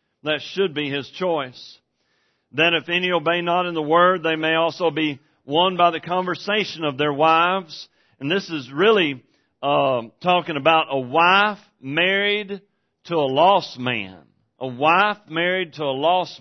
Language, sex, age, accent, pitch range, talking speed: English, male, 40-59, American, 145-180 Hz, 160 wpm